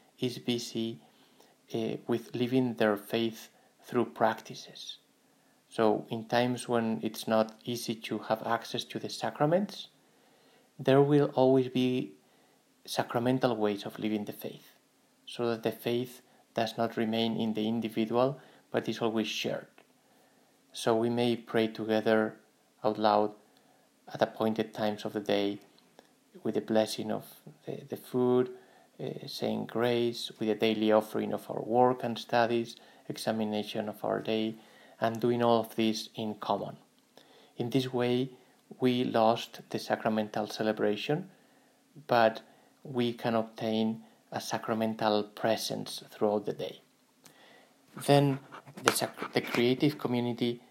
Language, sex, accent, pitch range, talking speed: English, male, Spanish, 110-125 Hz, 130 wpm